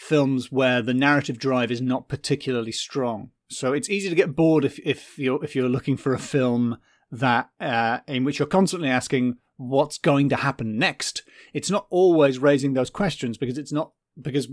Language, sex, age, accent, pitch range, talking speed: English, male, 30-49, British, 125-150 Hz, 190 wpm